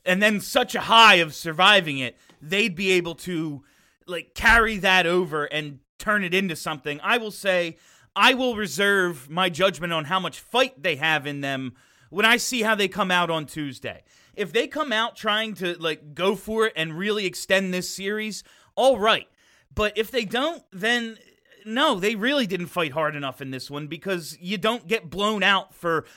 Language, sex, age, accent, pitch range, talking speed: English, male, 30-49, American, 160-220 Hz, 195 wpm